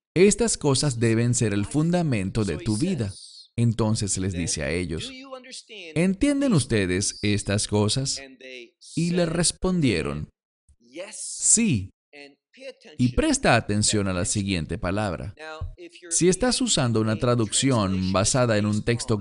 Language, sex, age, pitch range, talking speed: English, male, 40-59, 105-160 Hz, 120 wpm